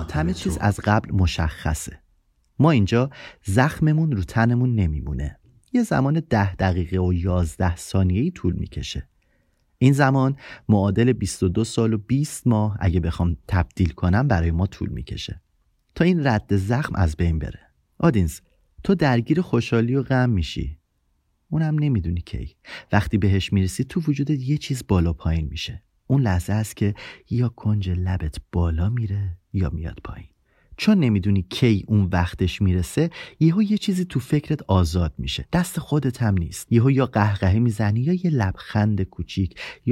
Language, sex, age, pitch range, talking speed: Persian, male, 30-49, 85-125 Hz, 155 wpm